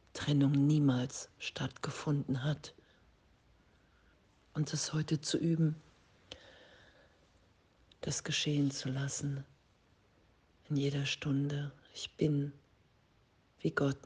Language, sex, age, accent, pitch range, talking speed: German, female, 50-69, German, 100-145 Hz, 85 wpm